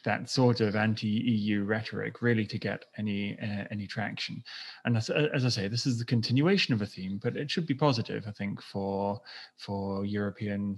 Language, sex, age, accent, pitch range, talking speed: English, male, 20-39, British, 105-125 Hz, 190 wpm